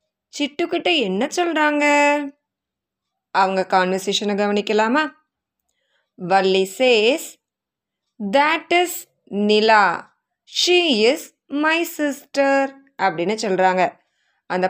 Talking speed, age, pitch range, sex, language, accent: 65 wpm, 20-39, 190-285 Hz, female, Tamil, native